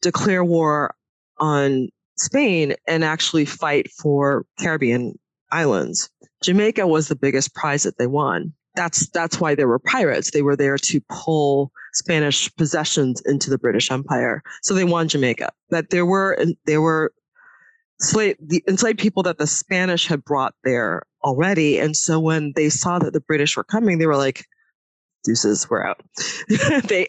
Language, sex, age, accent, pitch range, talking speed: English, female, 20-39, American, 135-170 Hz, 160 wpm